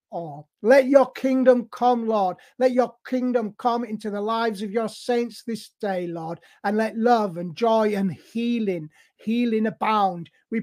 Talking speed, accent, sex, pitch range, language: 165 wpm, British, male, 190-230 Hz, English